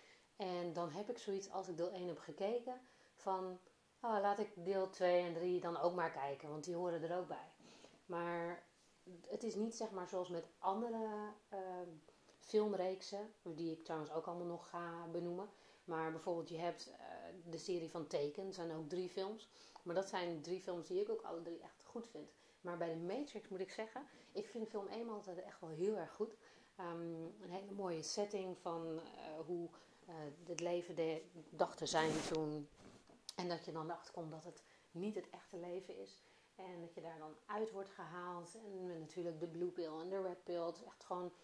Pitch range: 170-190 Hz